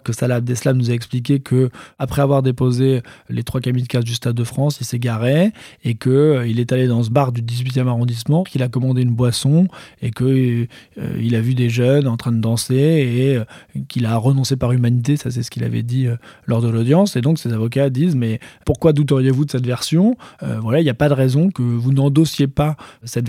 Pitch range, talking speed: 120-150 Hz, 240 wpm